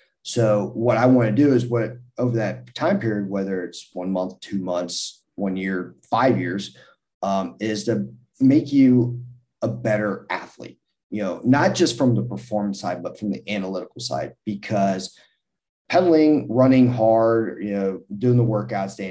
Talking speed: 165 wpm